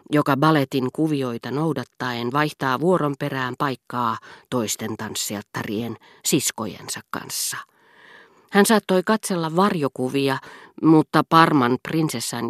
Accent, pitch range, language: native, 125-165 Hz, Finnish